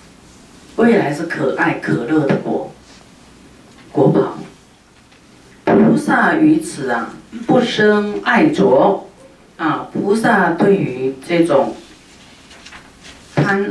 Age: 50-69